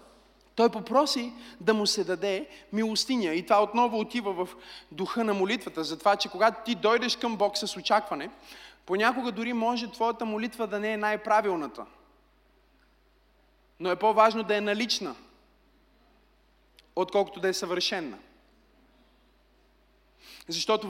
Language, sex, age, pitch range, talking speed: Bulgarian, male, 20-39, 205-245 Hz, 130 wpm